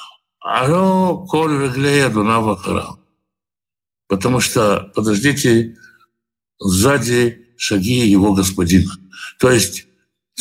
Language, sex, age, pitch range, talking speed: Russian, male, 60-79, 105-155 Hz, 70 wpm